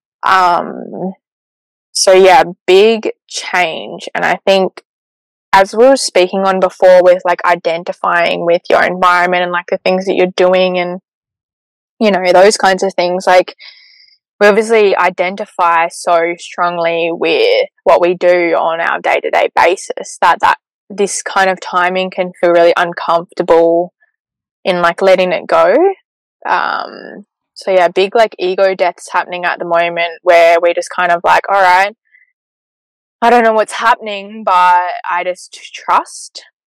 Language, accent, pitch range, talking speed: English, Australian, 175-205 Hz, 150 wpm